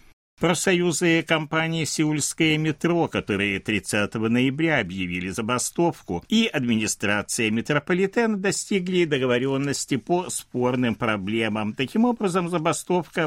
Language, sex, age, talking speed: Russian, male, 60-79, 95 wpm